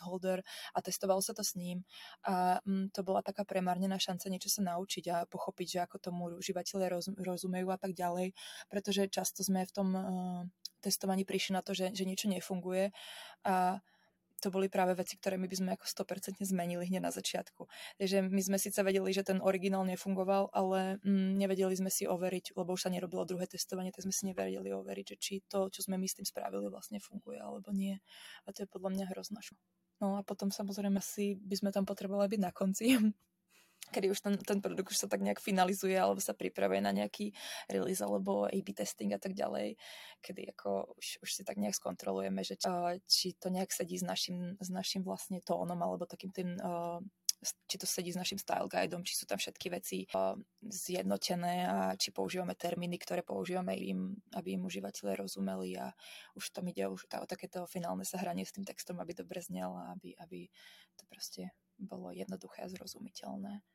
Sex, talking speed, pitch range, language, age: female, 185 wpm, 175-195 Hz, Czech, 20-39